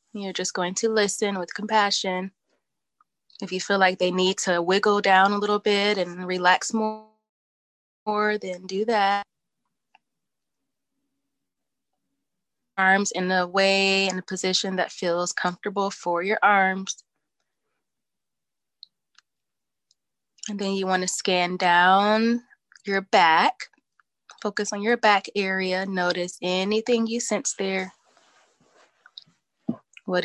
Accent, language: American, English